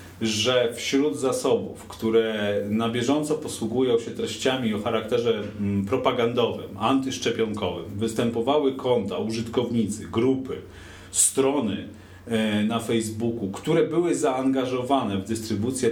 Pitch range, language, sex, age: 100-135 Hz, Polish, male, 40-59